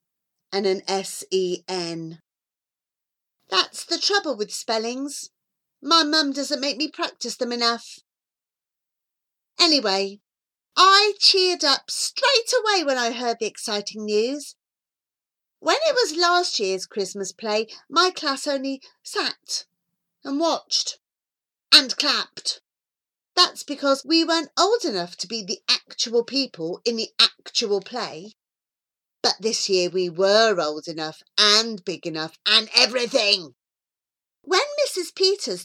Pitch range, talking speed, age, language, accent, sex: 190-310 Hz, 125 wpm, 40-59, English, British, female